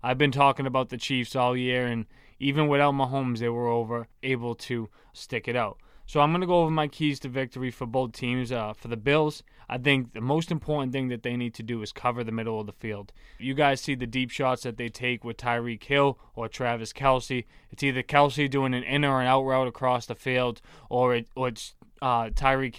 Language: English